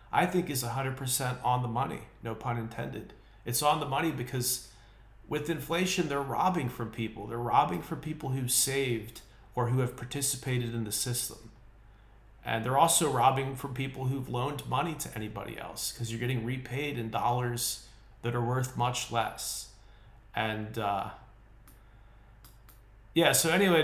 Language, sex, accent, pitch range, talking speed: English, male, American, 115-135 Hz, 155 wpm